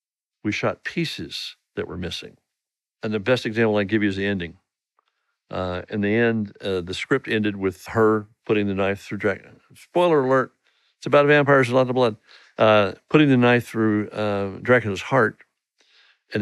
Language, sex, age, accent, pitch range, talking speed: English, male, 60-79, American, 100-120 Hz, 180 wpm